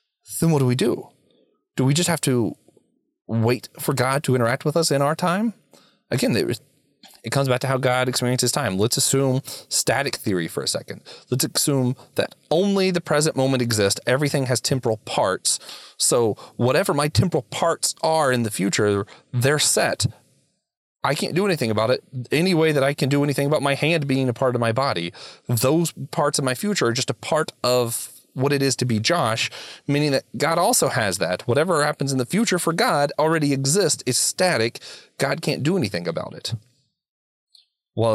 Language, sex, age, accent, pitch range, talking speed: English, male, 30-49, American, 120-150 Hz, 190 wpm